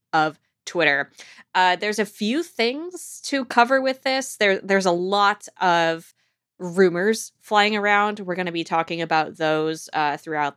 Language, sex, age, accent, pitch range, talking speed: English, female, 20-39, American, 165-230 Hz, 160 wpm